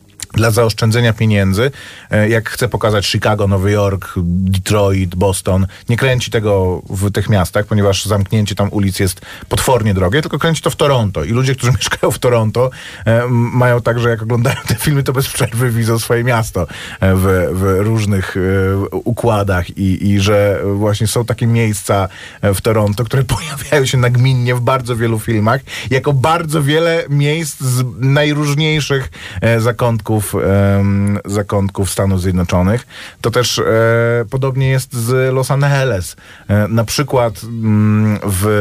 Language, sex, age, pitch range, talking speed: Polish, male, 30-49, 100-125 Hz, 145 wpm